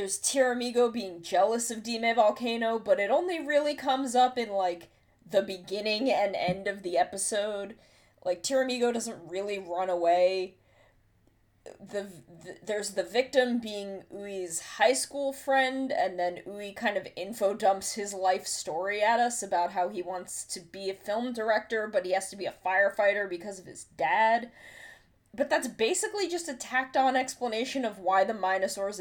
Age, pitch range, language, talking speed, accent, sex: 20-39, 185-255 Hz, English, 160 wpm, American, female